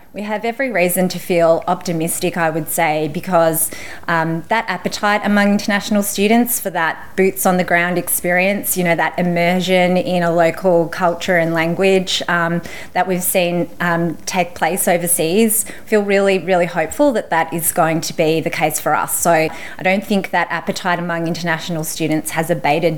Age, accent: 20-39, Australian